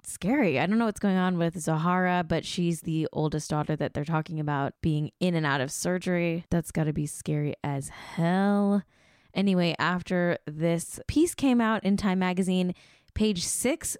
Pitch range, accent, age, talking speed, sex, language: 155-195 Hz, American, 10-29, 180 wpm, female, English